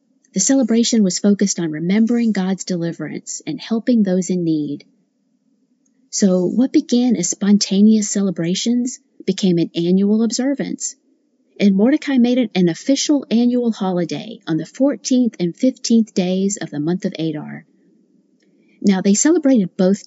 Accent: American